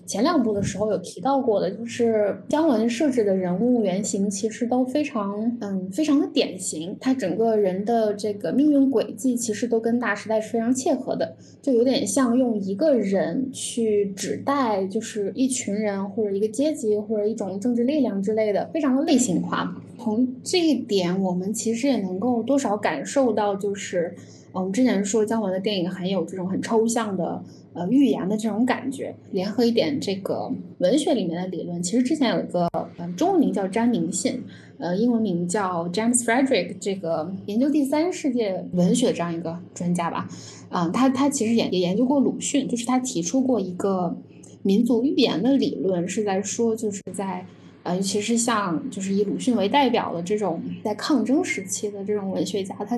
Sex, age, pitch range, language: female, 10-29, 195-250 Hz, Chinese